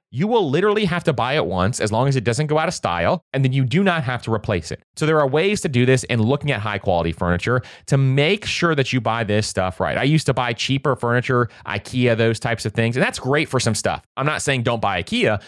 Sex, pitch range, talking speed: male, 110-140 Hz, 275 wpm